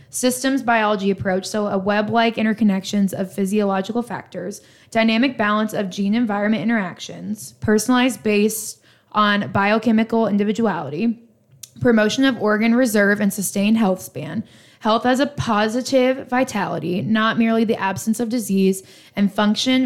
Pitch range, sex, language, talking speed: 195-230 Hz, female, English, 125 wpm